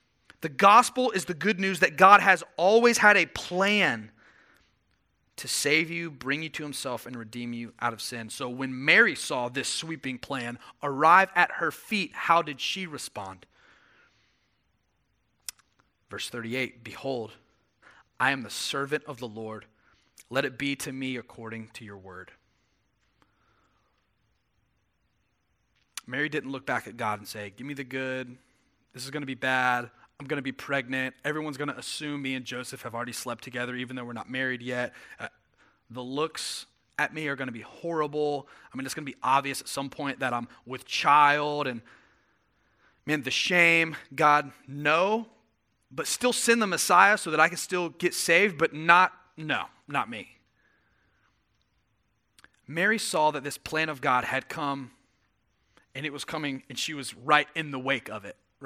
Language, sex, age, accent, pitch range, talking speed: English, male, 30-49, American, 120-155 Hz, 170 wpm